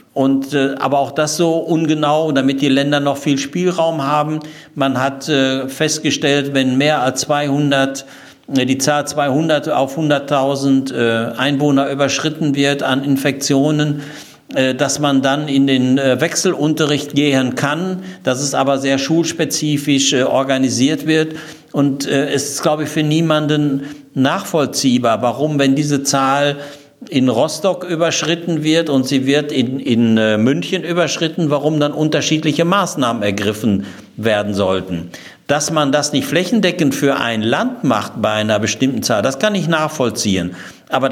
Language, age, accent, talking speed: German, 60-79, German, 135 wpm